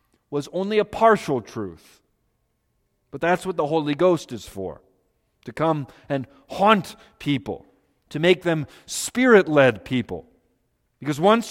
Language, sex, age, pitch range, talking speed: English, male, 40-59, 120-175 Hz, 130 wpm